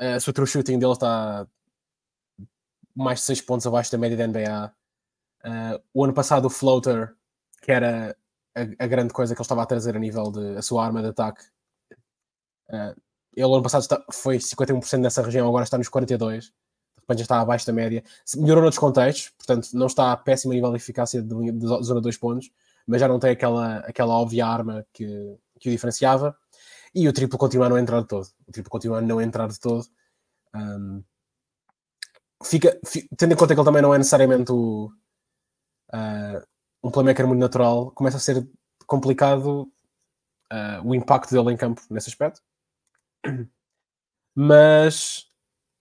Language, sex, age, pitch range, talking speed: Portuguese, male, 20-39, 115-135 Hz, 175 wpm